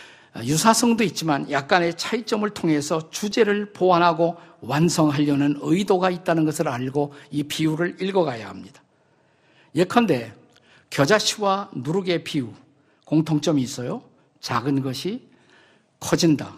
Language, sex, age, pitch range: Korean, male, 50-69, 145-195 Hz